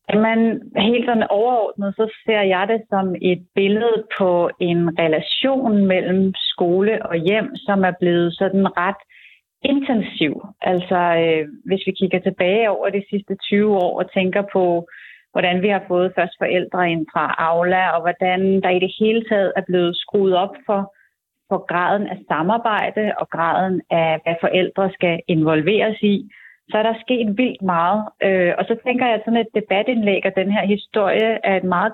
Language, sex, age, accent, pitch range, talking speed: Danish, female, 30-49, native, 180-220 Hz, 170 wpm